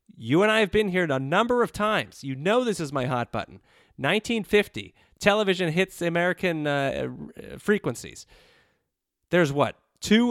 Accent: American